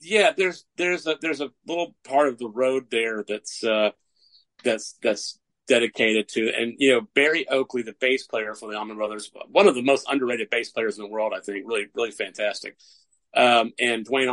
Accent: American